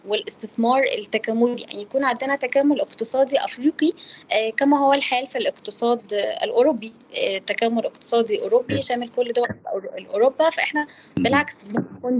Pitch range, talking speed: 215-260 Hz, 130 wpm